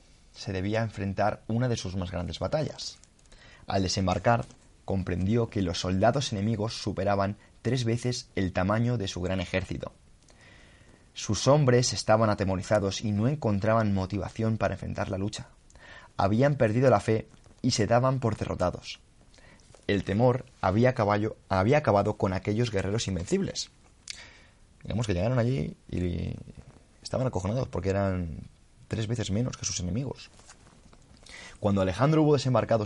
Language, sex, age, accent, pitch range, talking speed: Spanish, male, 20-39, Spanish, 95-120 Hz, 135 wpm